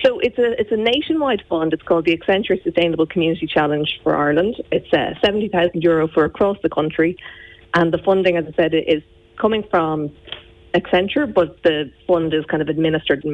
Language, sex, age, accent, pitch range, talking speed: English, female, 30-49, Irish, 150-180 Hz, 180 wpm